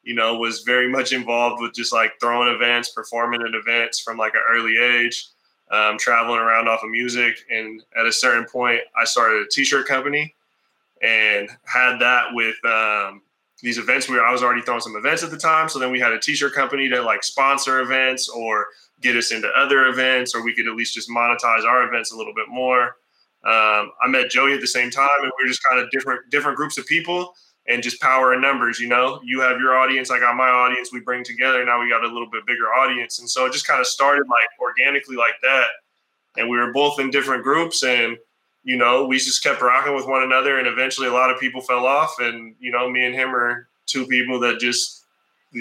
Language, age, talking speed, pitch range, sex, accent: English, 20-39, 230 wpm, 120-130 Hz, male, American